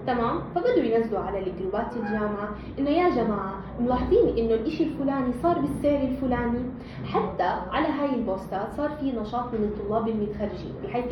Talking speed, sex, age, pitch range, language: 145 wpm, female, 20-39, 215-280 Hz, Arabic